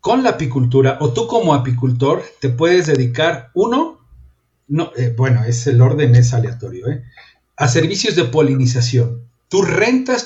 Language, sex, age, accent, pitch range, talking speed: Spanish, male, 50-69, Mexican, 120-170 Hz, 150 wpm